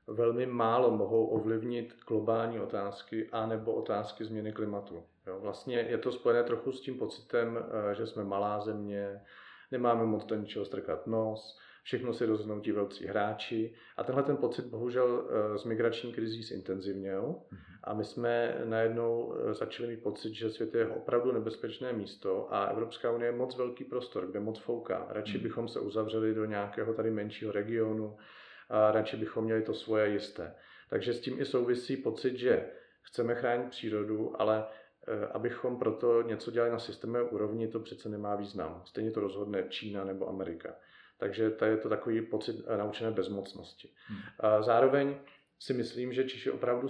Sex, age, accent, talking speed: male, 40-59, native, 165 wpm